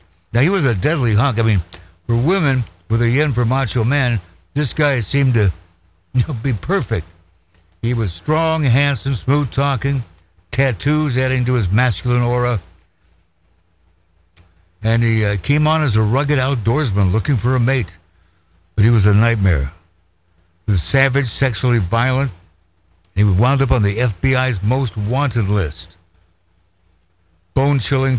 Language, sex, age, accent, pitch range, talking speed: English, male, 60-79, American, 85-130 Hz, 145 wpm